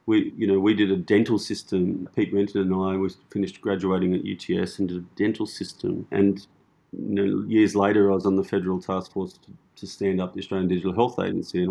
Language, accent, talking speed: English, Australian, 225 wpm